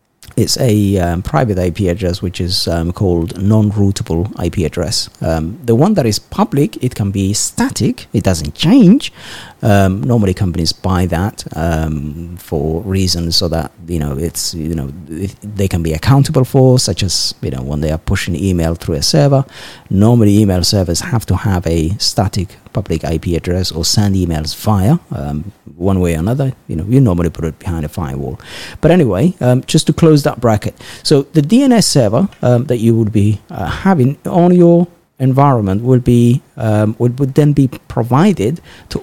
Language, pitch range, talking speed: English, 90-130 Hz, 180 wpm